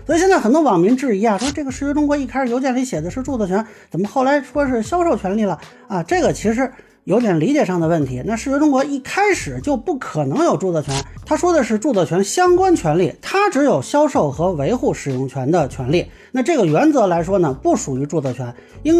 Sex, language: male, Chinese